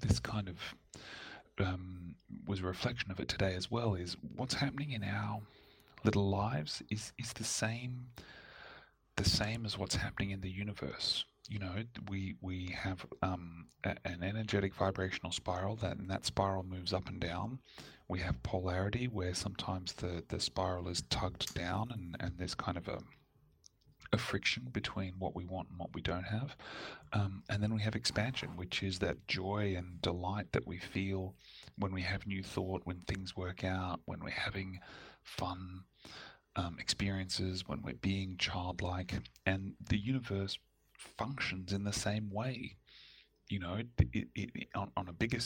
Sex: male